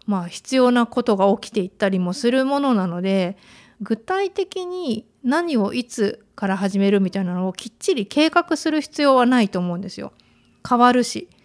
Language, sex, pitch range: Japanese, female, 195-265 Hz